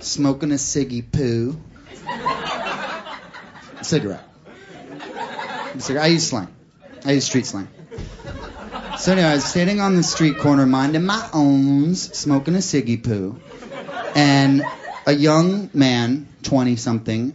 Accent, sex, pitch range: American, male, 110-145 Hz